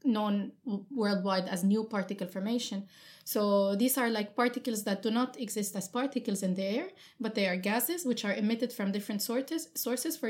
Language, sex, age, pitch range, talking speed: English, female, 30-49, 195-240 Hz, 185 wpm